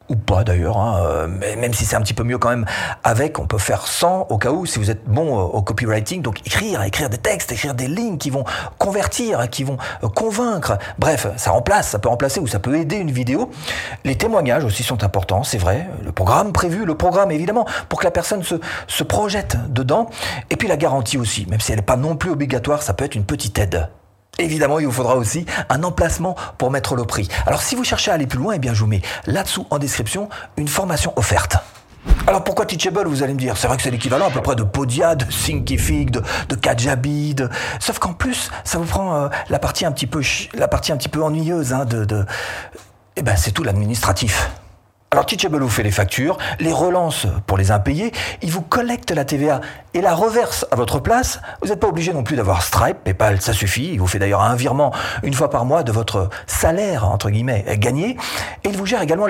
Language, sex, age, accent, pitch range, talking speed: French, male, 40-59, French, 105-150 Hz, 230 wpm